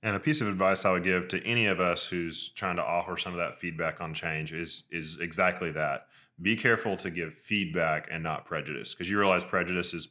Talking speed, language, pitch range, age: 230 wpm, English, 85-100 Hz, 10-29